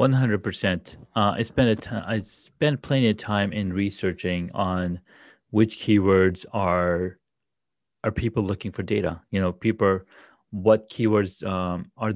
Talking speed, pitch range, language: 155 wpm, 90-105 Hz, English